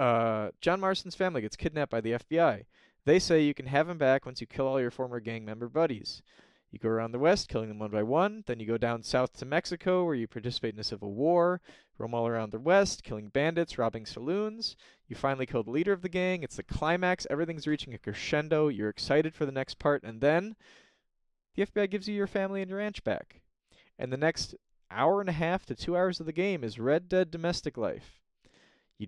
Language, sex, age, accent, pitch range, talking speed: English, male, 20-39, American, 120-180 Hz, 225 wpm